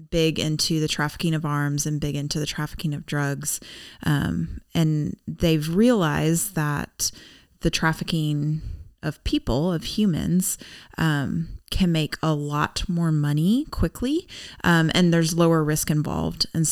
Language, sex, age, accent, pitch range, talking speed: English, female, 20-39, American, 155-175 Hz, 140 wpm